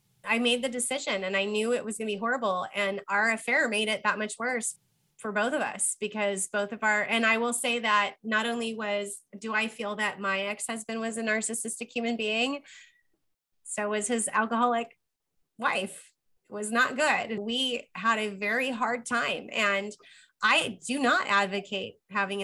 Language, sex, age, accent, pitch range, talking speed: English, female, 20-39, American, 205-240 Hz, 185 wpm